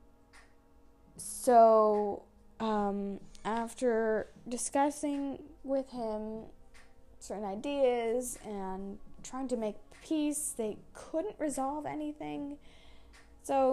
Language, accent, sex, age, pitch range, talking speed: English, American, female, 20-39, 195-245 Hz, 80 wpm